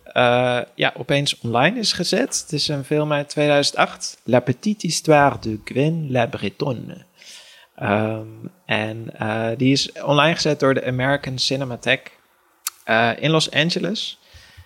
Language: Dutch